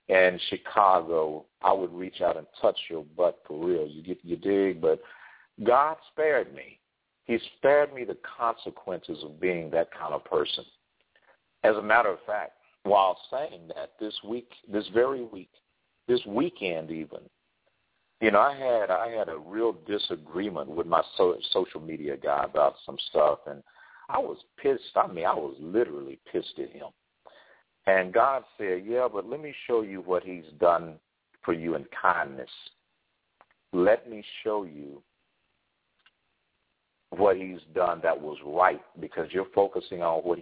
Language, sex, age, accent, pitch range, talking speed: English, male, 50-69, American, 85-125 Hz, 160 wpm